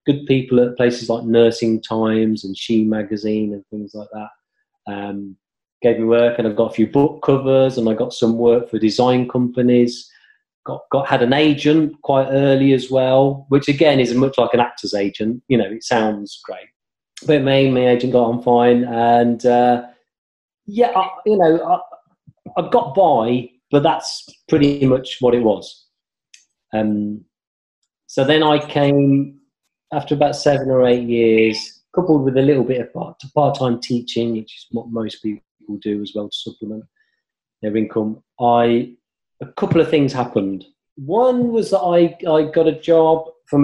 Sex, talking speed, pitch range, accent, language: male, 170 wpm, 115-140 Hz, British, English